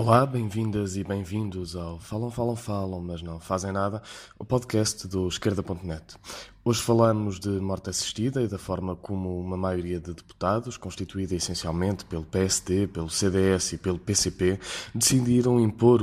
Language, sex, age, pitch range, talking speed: Portuguese, male, 20-39, 95-115 Hz, 150 wpm